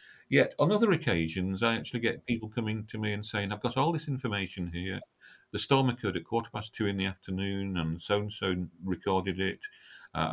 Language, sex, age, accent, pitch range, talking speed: English, male, 40-59, British, 85-115 Hz, 210 wpm